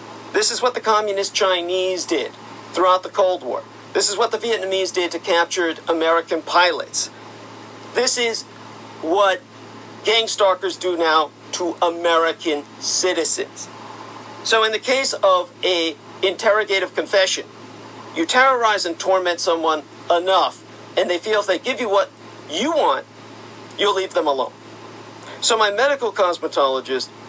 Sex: male